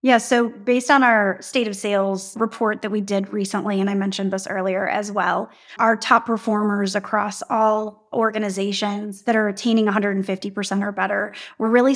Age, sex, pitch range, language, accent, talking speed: 30-49, female, 200-230 Hz, English, American, 170 wpm